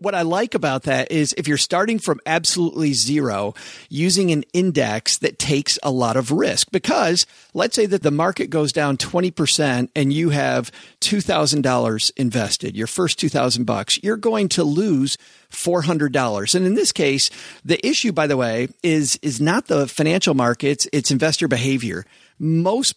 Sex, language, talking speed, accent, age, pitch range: male, English, 160 wpm, American, 40-59, 130-175 Hz